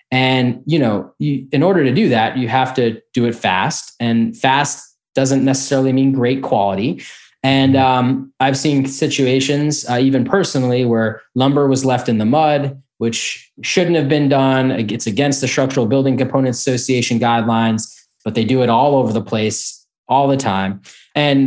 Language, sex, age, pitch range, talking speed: English, male, 20-39, 115-135 Hz, 170 wpm